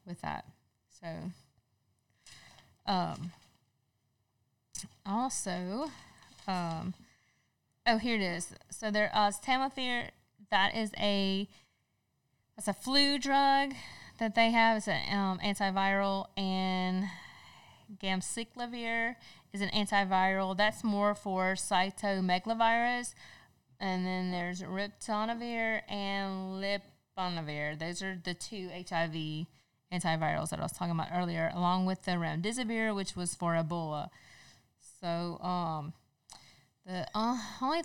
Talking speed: 105 wpm